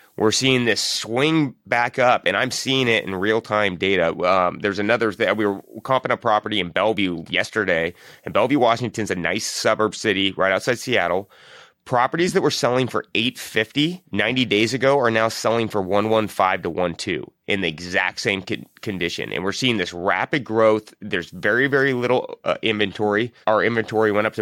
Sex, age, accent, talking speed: male, 30-49, American, 185 wpm